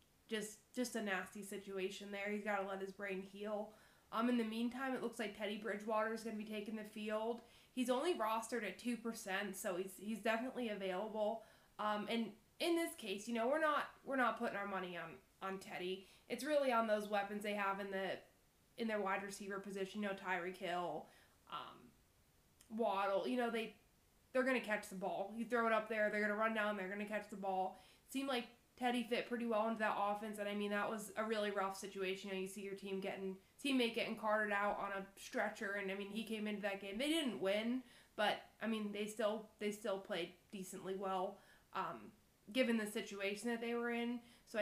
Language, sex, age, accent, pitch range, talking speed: English, female, 20-39, American, 200-230 Hz, 220 wpm